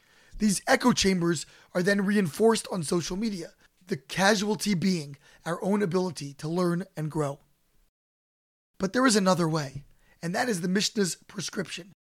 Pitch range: 175-225 Hz